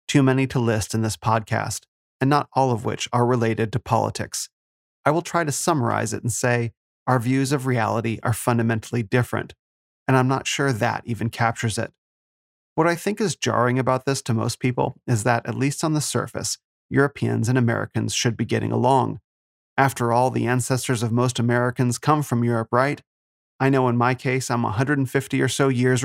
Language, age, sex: English, 30-49, male